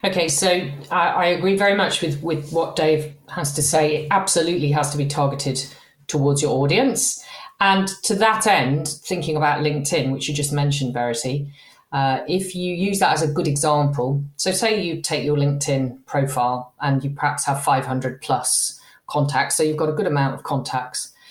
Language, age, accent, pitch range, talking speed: English, 40-59, British, 135-175 Hz, 185 wpm